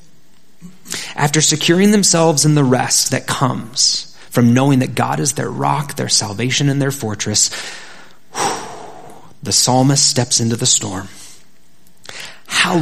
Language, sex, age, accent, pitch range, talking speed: English, male, 30-49, American, 125-165 Hz, 130 wpm